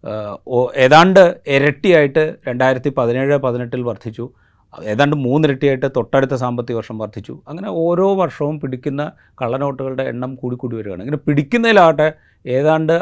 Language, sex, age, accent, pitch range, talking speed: Malayalam, male, 30-49, native, 120-155 Hz, 105 wpm